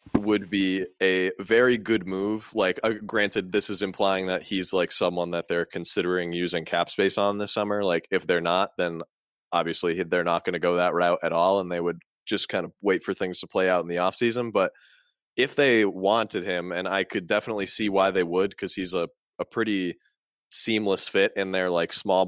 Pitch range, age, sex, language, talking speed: 90-105 Hz, 20-39, male, English, 215 wpm